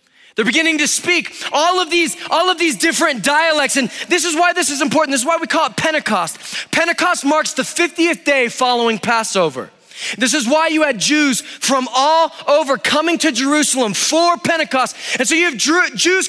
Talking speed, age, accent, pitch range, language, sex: 185 wpm, 20-39, American, 245-320 Hz, English, male